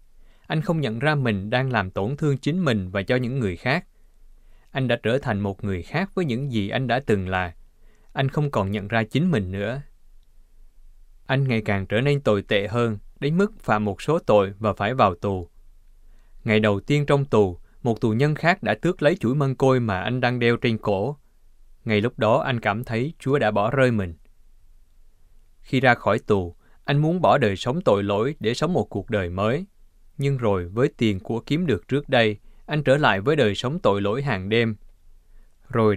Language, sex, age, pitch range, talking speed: Vietnamese, male, 20-39, 100-135 Hz, 210 wpm